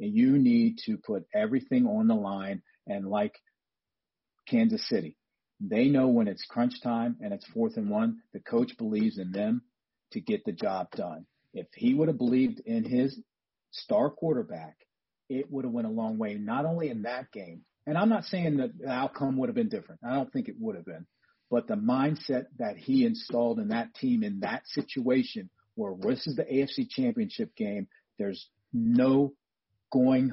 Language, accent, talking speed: English, American, 185 wpm